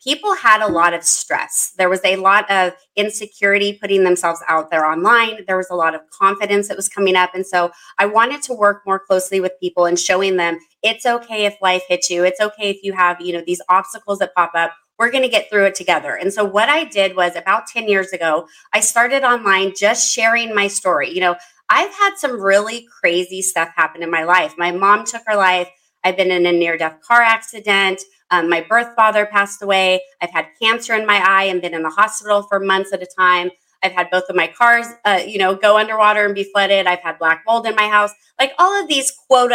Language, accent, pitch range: English, American, 175-215 Hz